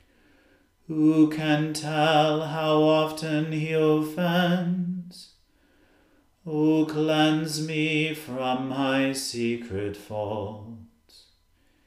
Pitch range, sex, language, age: 150-155 Hz, male, English, 40-59